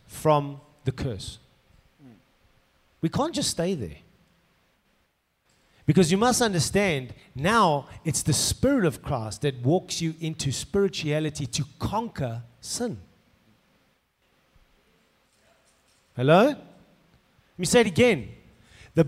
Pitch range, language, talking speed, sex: 135-195 Hz, English, 105 wpm, male